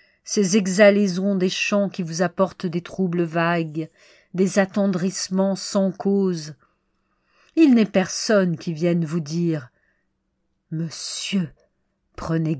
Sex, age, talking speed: female, 50-69, 110 wpm